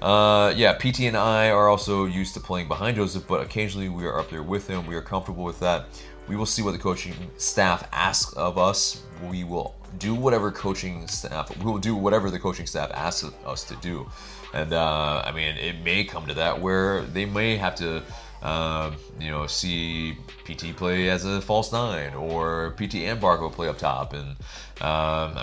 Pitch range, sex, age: 80-105 Hz, male, 30-49